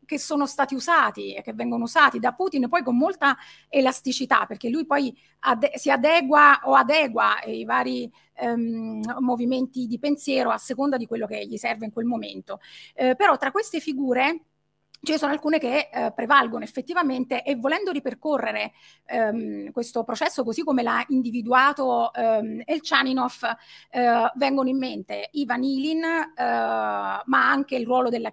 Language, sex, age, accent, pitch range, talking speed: Italian, female, 30-49, native, 230-280 Hz, 155 wpm